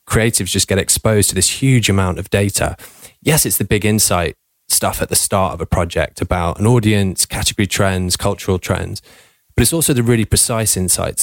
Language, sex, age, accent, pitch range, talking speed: English, male, 20-39, British, 95-110 Hz, 190 wpm